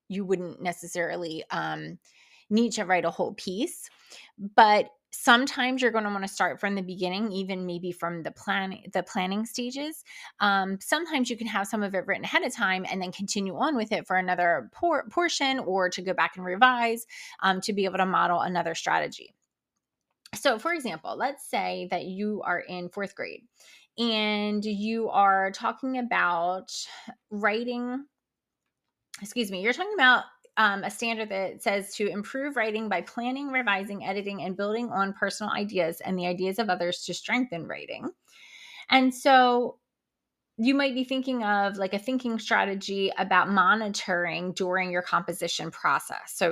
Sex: female